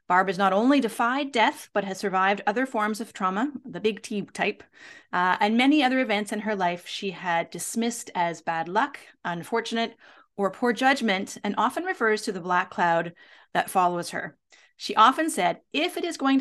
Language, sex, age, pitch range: English, female, 30-49, 190-250 Hz